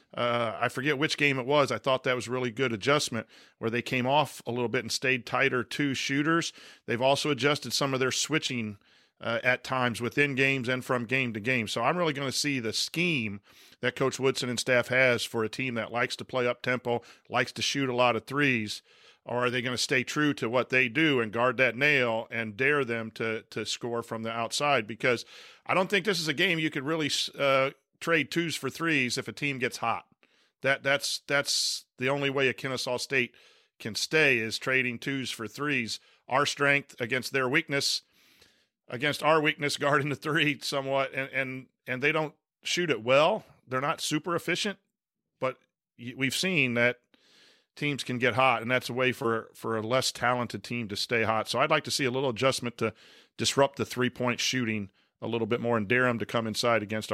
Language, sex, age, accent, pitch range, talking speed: English, male, 40-59, American, 120-145 Hz, 215 wpm